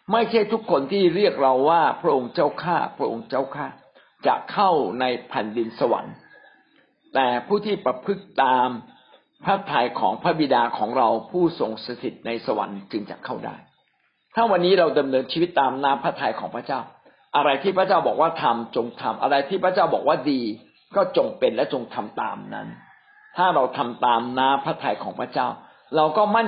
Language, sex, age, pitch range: Thai, male, 60-79, 125-195 Hz